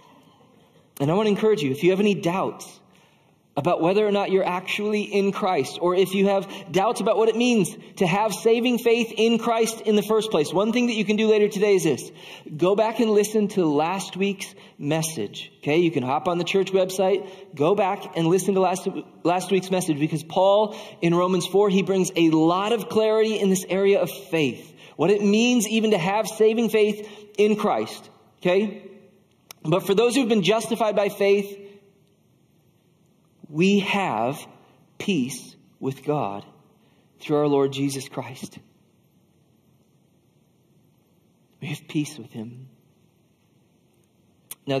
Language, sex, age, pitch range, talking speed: English, male, 30-49, 150-210 Hz, 170 wpm